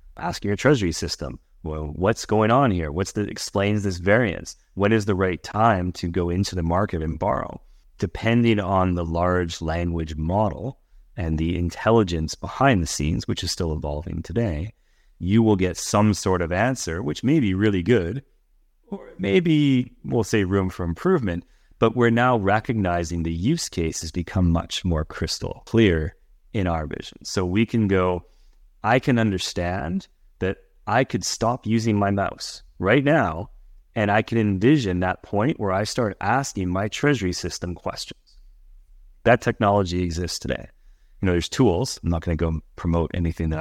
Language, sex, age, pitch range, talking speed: English, male, 30-49, 85-110 Hz, 170 wpm